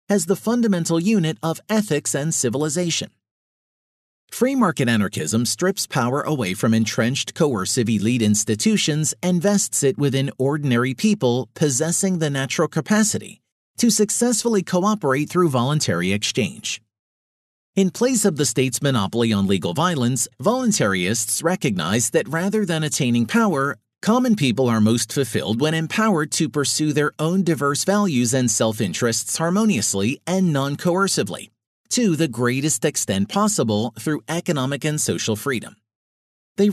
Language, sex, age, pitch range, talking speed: English, male, 40-59, 120-185 Hz, 130 wpm